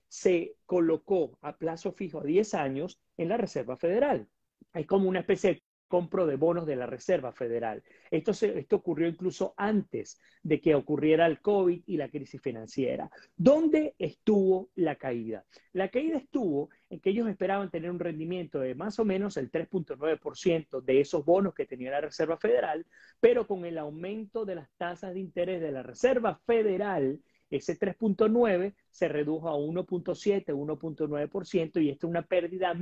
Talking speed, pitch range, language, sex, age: 165 wpm, 155-200 Hz, Spanish, male, 40-59